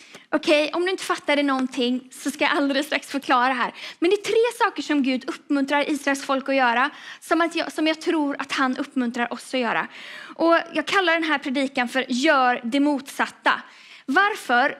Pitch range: 255-325 Hz